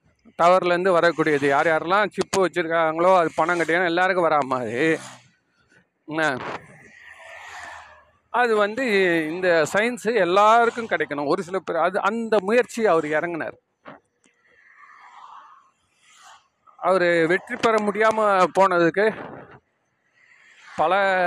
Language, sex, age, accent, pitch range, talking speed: Tamil, male, 40-59, native, 155-200 Hz, 85 wpm